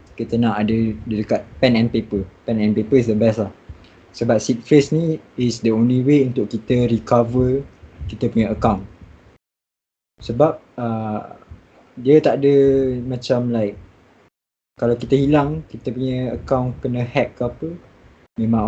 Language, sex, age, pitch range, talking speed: Malay, male, 20-39, 110-125 Hz, 150 wpm